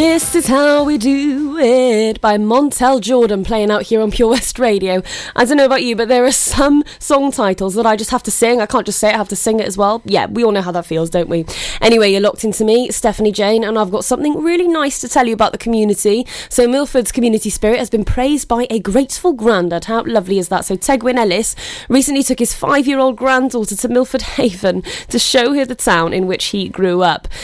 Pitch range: 210-275 Hz